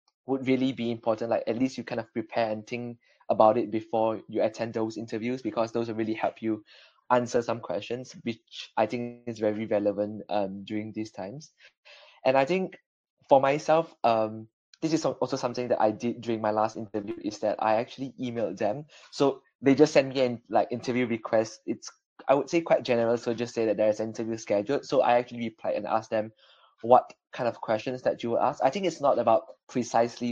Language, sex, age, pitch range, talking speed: English, male, 20-39, 110-125 Hz, 215 wpm